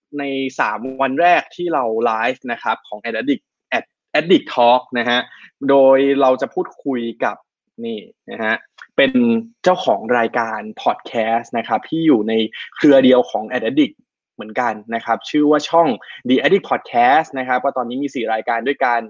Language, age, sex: Thai, 20-39, male